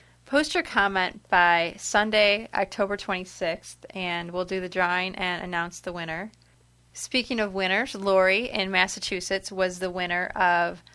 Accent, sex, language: American, female, English